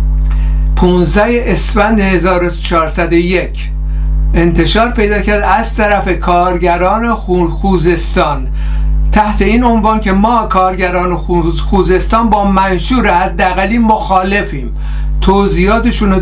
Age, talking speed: 60-79, 85 wpm